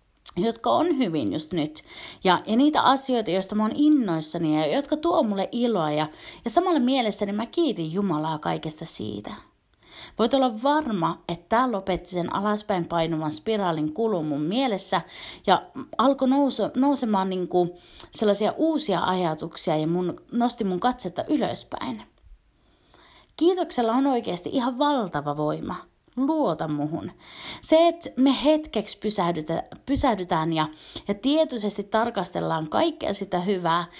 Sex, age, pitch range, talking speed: female, 30-49, 175-275 Hz, 130 wpm